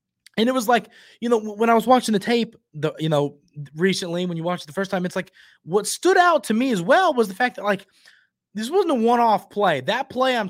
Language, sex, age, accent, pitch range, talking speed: English, male, 20-39, American, 140-195 Hz, 250 wpm